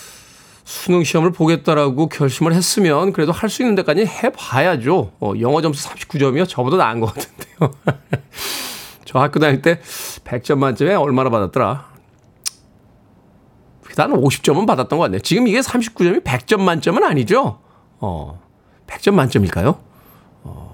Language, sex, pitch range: Korean, male, 125-175 Hz